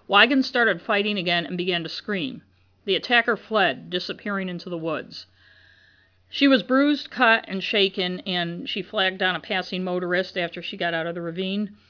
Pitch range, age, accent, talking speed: 190-235 Hz, 50-69, American, 175 wpm